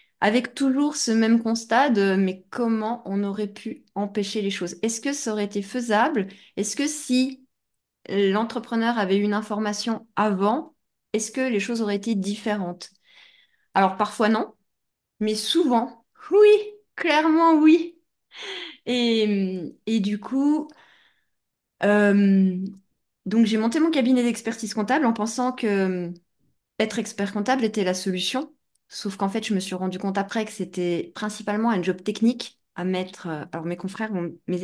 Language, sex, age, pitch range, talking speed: French, female, 20-39, 195-235 Hz, 155 wpm